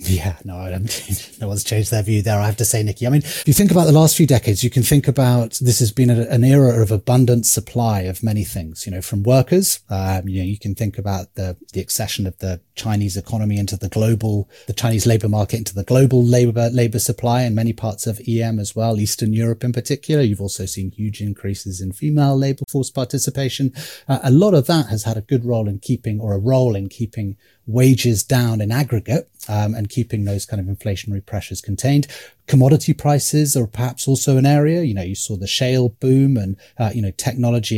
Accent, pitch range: British, 105-130 Hz